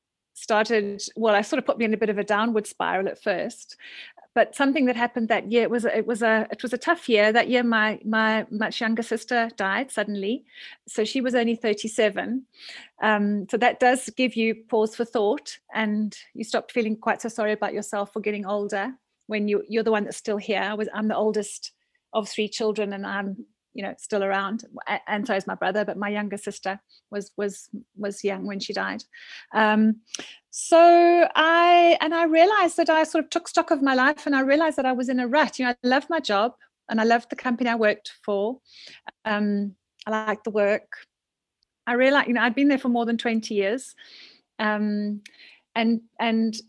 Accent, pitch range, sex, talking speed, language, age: British, 210-250 Hz, female, 210 wpm, English, 30-49